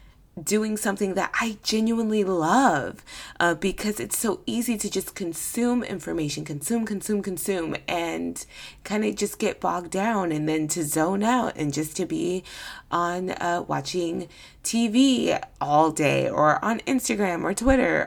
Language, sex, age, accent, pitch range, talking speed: English, female, 20-39, American, 160-230 Hz, 150 wpm